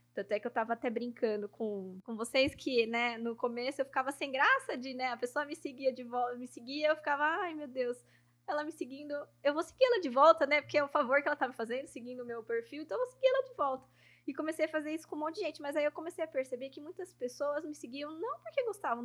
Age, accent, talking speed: 20-39, Brazilian, 270 wpm